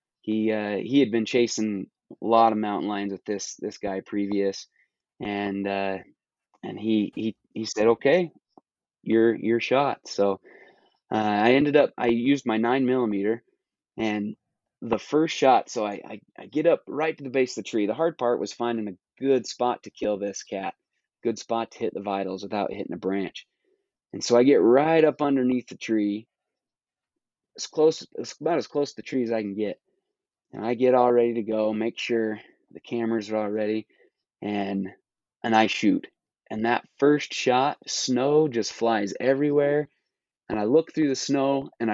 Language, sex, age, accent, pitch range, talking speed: English, male, 20-39, American, 105-130 Hz, 185 wpm